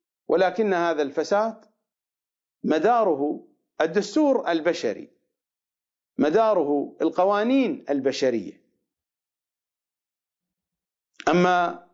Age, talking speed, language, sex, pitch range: 40-59, 50 wpm, English, male, 145-235 Hz